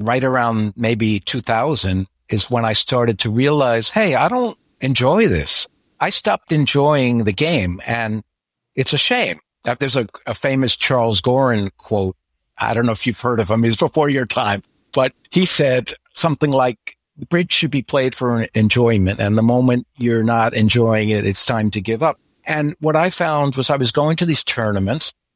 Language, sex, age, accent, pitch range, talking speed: English, male, 60-79, American, 110-140 Hz, 185 wpm